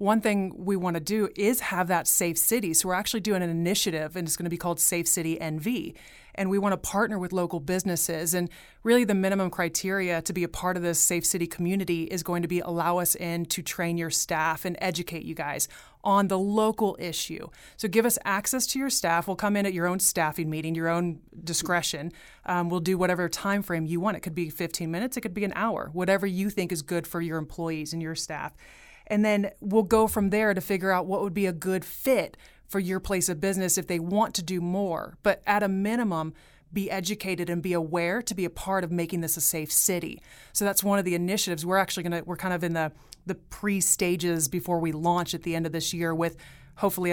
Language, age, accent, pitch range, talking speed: English, 30-49, American, 170-195 Hz, 240 wpm